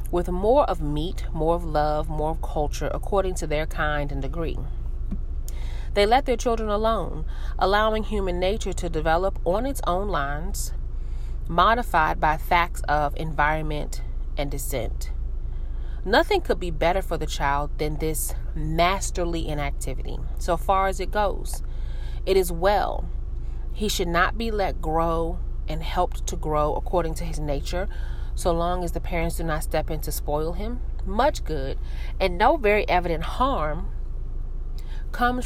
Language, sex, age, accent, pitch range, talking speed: English, female, 30-49, American, 140-185 Hz, 150 wpm